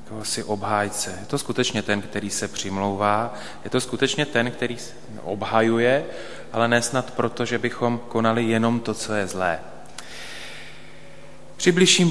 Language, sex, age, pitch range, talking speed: Slovak, male, 30-49, 95-115 Hz, 140 wpm